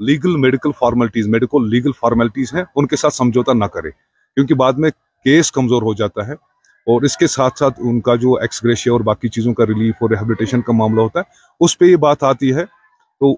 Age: 30-49